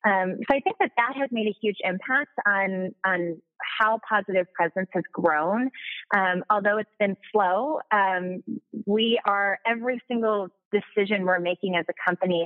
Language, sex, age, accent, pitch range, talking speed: English, female, 20-39, American, 180-220 Hz, 165 wpm